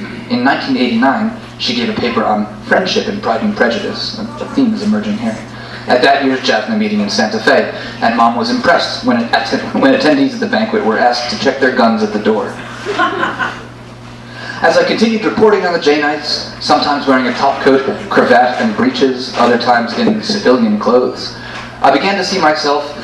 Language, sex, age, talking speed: English, male, 30-49, 185 wpm